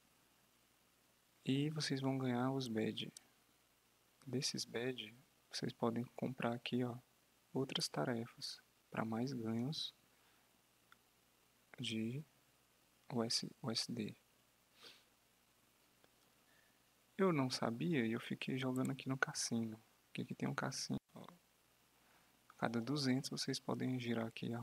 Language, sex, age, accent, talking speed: English, male, 20-39, Brazilian, 105 wpm